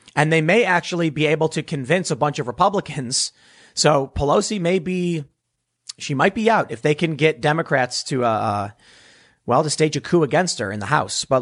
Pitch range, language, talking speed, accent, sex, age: 130-175 Hz, English, 200 wpm, American, male, 30-49